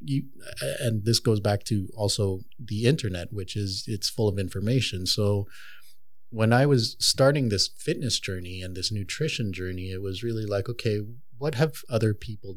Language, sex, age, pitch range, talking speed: English, male, 30-49, 100-125 Hz, 170 wpm